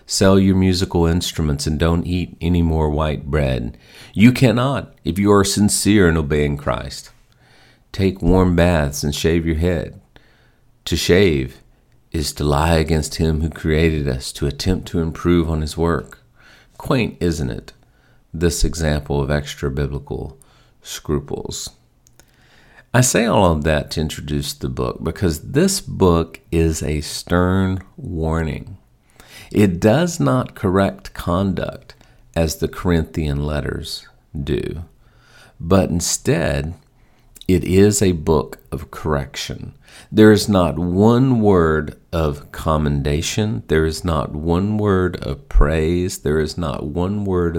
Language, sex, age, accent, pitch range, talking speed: English, male, 50-69, American, 75-95 Hz, 130 wpm